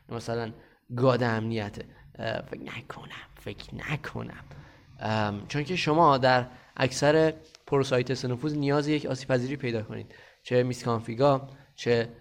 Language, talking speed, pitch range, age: Persian, 115 wpm, 105-135 Hz, 20-39